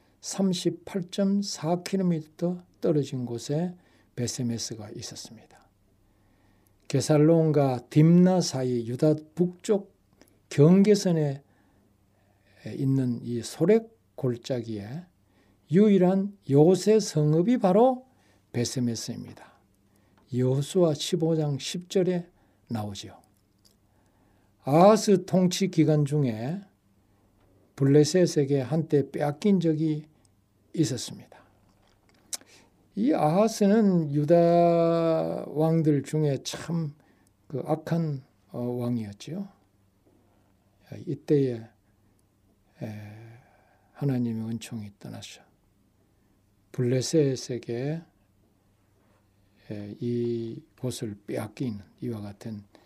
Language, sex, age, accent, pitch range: Korean, male, 60-79, native, 100-160 Hz